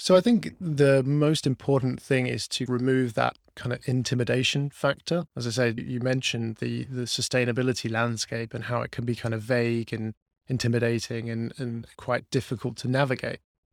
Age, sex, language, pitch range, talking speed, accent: 20-39, male, English, 120-130 Hz, 175 wpm, British